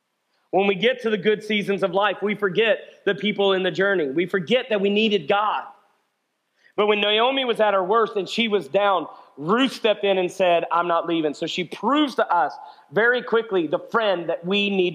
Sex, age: male, 40-59